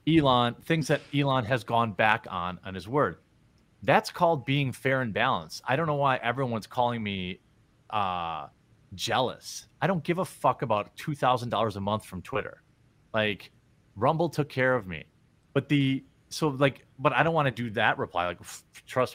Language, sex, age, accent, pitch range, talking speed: English, male, 30-49, American, 115-150 Hz, 180 wpm